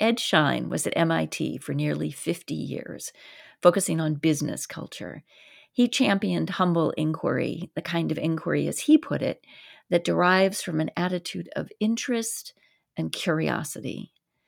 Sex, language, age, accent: female, English, 40-59, American